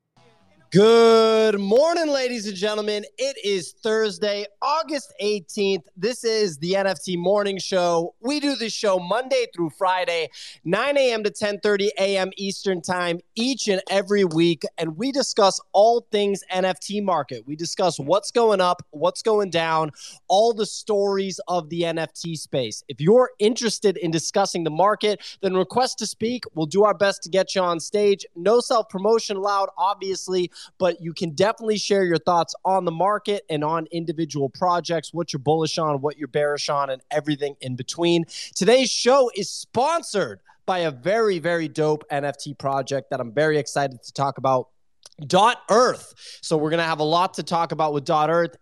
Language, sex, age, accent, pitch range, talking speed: English, male, 20-39, American, 160-210 Hz, 170 wpm